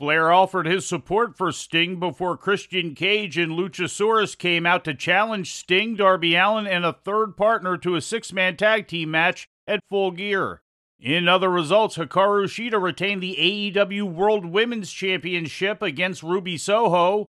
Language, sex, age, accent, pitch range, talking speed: English, male, 40-59, American, 170-200 Hz, 155 wpm